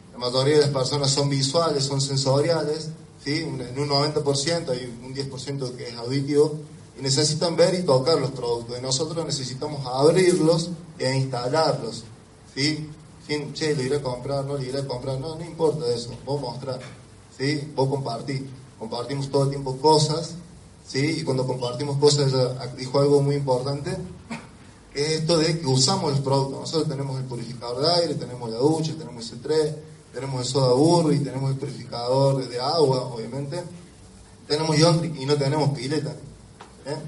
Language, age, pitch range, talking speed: Spanish, 20-39, 130-155 Hz, 170 wpm